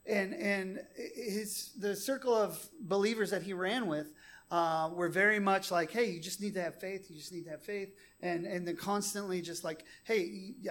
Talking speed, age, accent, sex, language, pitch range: 200 wpm, 30-49, American, male, English, 160-205 Hz